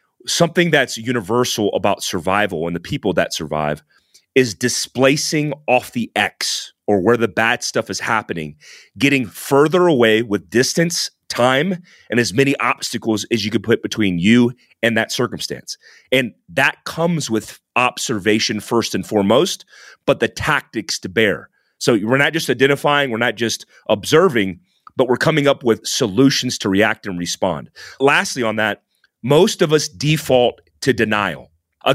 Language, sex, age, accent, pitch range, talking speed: English, male, 30-49, American, 110-140 Hz, 155 wpm